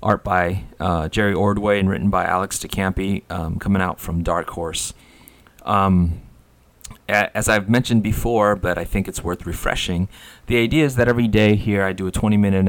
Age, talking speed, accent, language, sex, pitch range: 30-49, 180 wpm, American, English, male, 90-105 Hz